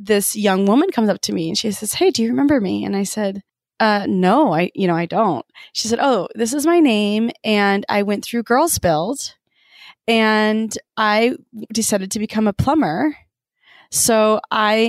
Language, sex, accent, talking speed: English, female, American, 190 wpm